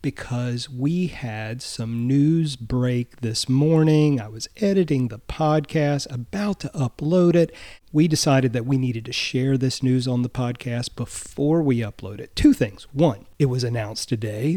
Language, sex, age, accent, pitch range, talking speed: English, male, 40-59, American, 120-155 Hz, 165 wpm